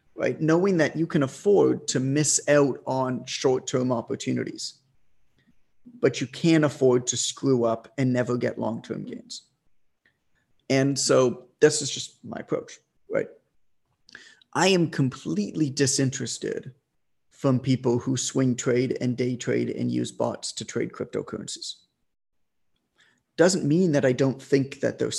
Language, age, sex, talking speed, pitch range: English, 30-49, male, 140 wpm, 125-155 Hz